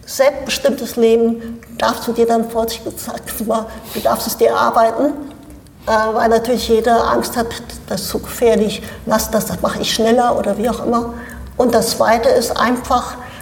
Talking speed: 170 wpm